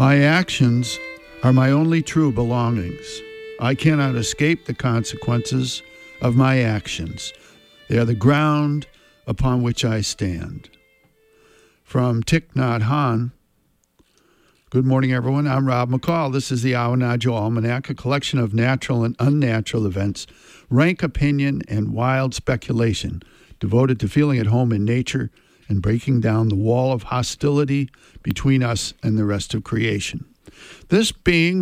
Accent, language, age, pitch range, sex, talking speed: American, English, 60-79, 115-150 Hz, male, 135 wpm